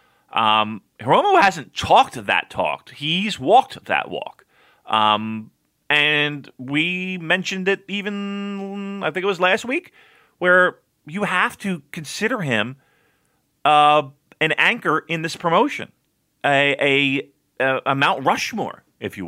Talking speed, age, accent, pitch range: 130 wpm, 30-49, American, 130-180 Hz